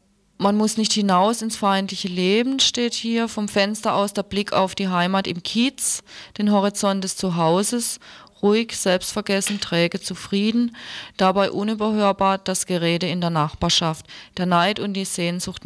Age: 20-39